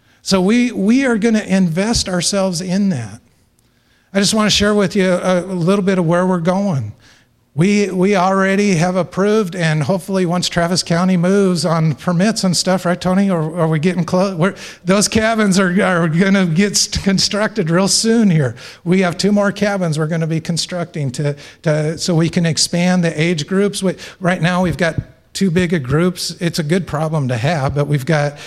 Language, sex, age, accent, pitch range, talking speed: English, male, 50-69, American, 140-185 Hz, 205 wpm